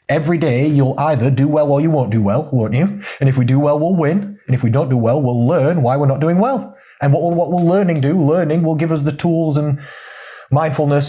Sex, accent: male, British